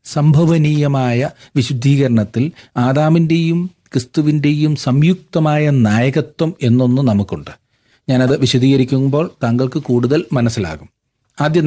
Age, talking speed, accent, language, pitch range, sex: 40-59, 70 wpm, native, Malayalam, 115-150 Hz, male